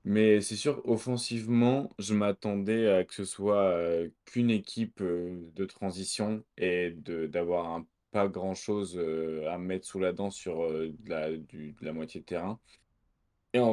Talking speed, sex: 175 wpm, male